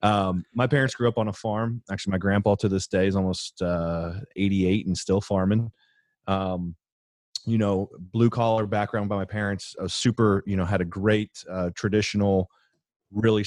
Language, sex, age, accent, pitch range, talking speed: English, male, 30-49, American, 90-100 Hz, 175 wpm